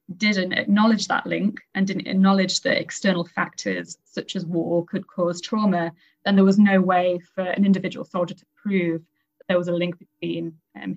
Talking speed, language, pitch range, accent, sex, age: 185 wpm, English, 175-205 Hz, British, female, 20-39